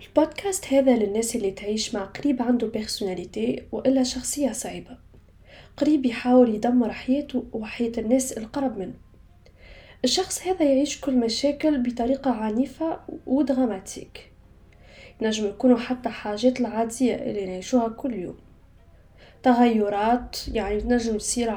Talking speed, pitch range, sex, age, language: 115 wpm, 220-270 Hz, female, 10-29, Arabic